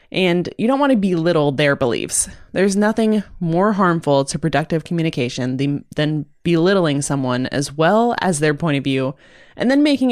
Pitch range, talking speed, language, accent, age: 155-210 Hz, 165 wpm, English, American, 20-39